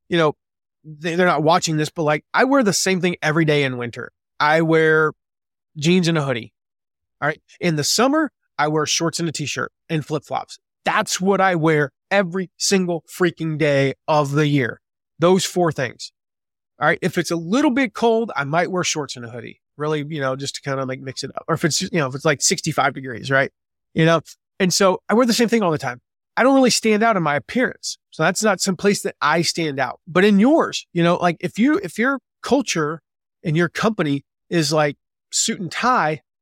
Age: 30-49